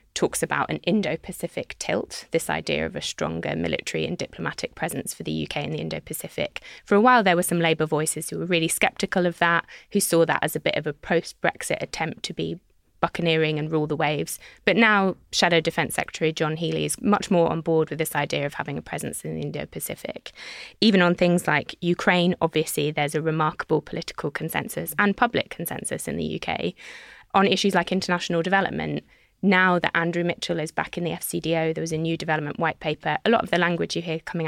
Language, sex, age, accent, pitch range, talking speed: English, female, 20-39, British, 155-190 Hz, 205 wpm